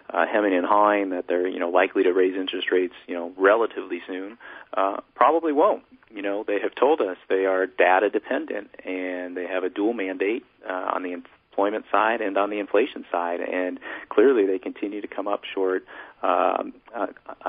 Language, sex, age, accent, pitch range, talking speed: English, male, 40-59, American, 90-100 Hz, 190 wpm